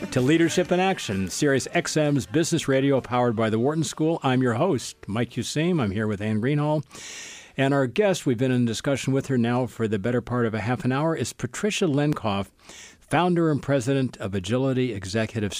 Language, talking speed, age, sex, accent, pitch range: English, 195 wpm, 60-79, male, American, 110-145 Hz